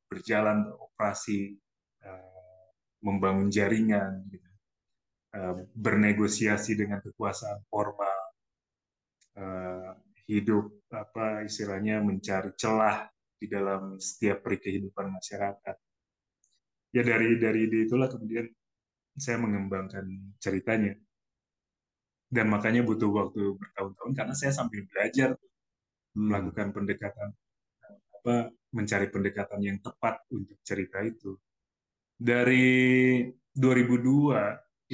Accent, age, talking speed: native, 20-39, 80 wpm